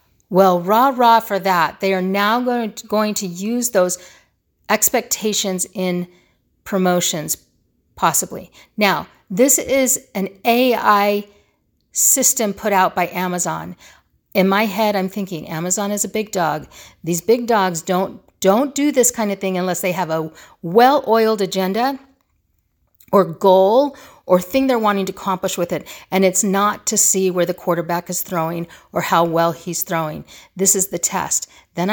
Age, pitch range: 50-69, 180-235 Hz